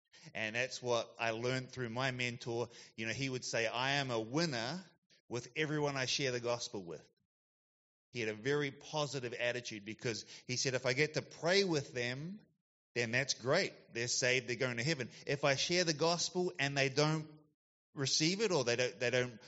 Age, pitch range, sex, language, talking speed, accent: 30-49, 125-165 Hz, male, English, 195 wpm, Australian